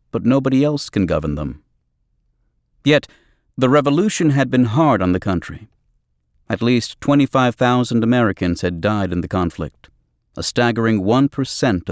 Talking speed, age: 135 wpm, 50-69